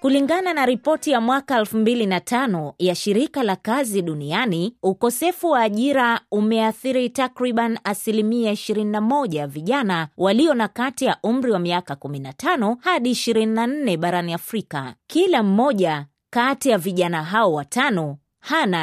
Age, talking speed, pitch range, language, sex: 20-39, 120 wpm, 175-255 Hz, Swahili, female